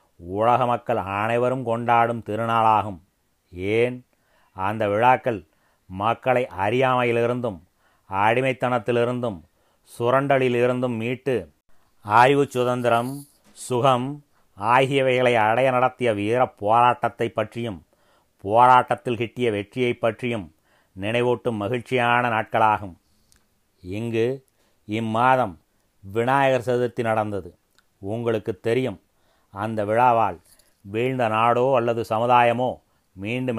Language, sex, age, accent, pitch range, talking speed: Tamil, male, 30-49, native, 110-125 Hz, 75 wpm